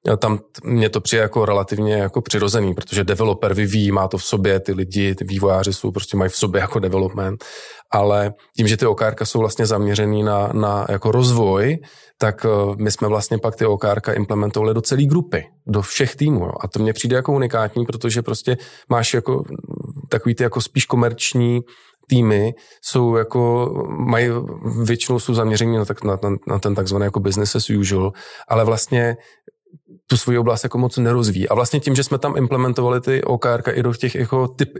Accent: native